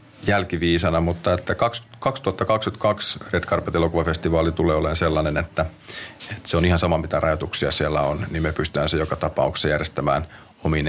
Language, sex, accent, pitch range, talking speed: Finnish, male, native, 80-90 Hz, 145 wpm